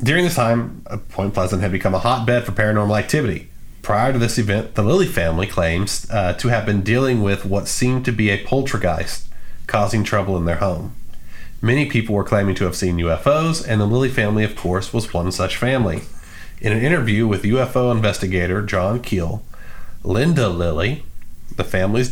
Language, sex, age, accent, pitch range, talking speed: English, male, 40-59, American, 95-120 Hz, 180 wpm